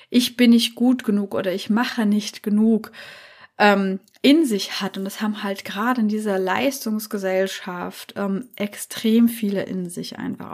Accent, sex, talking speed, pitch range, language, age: German, female, 160 wpm, 200-225 Hz, German, 20-39